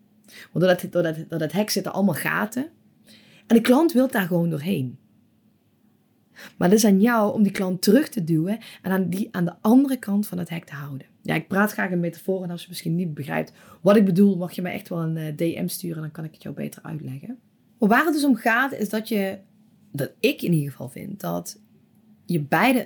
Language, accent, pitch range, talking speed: Dutch, Dutch, 145-210 Hz, 235 wpm